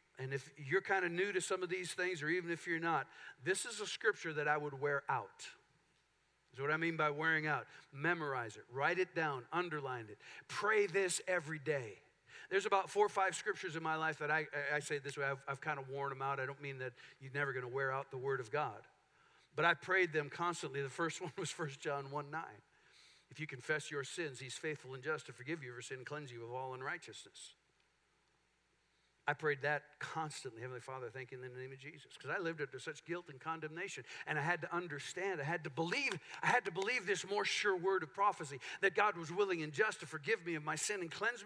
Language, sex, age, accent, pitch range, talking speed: English, male, 50-69, American, 140-185 Hz, 240 wpm